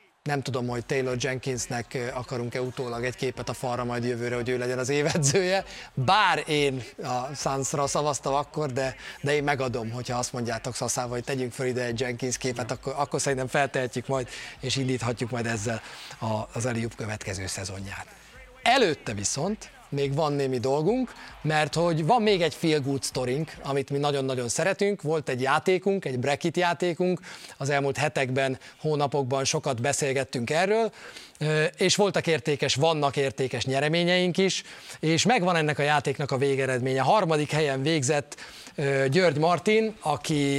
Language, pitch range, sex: Hungarian, 125-155 Hz, male